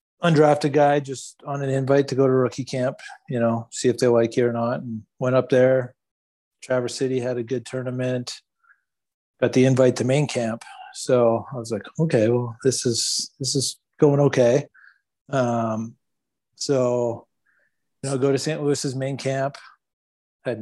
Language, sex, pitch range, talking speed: English, male, 115-135 Hz, 170 wpm